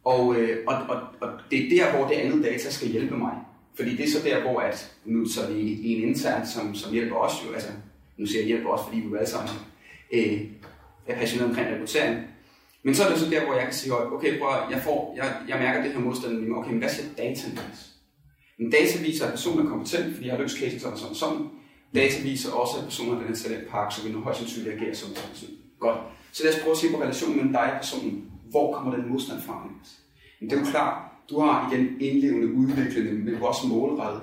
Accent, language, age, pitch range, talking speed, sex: native, Danish, 30-49, 115-165 Hz, 235 wpm, male